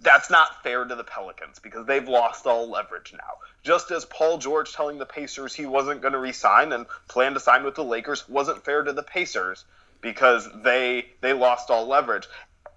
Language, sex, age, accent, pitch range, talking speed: English, male, 30-49, American, 145-200 Hz, 195 wpm